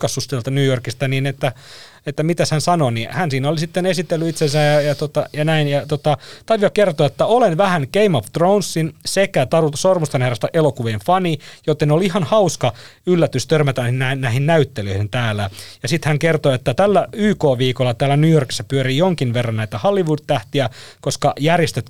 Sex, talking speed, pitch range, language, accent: male, 170 wpm, 120-160 Hz, Finnish, native